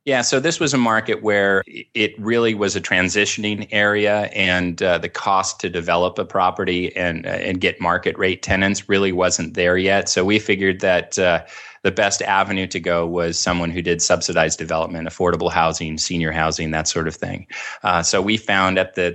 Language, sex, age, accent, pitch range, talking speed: English, male, 30-49, American, 85-95 Hz, 195 wpm